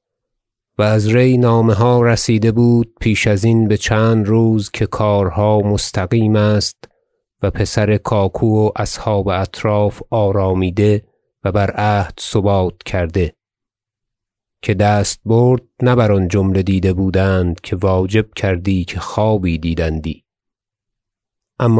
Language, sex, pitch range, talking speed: Persian, male, 100-115 Hz, 120 wpm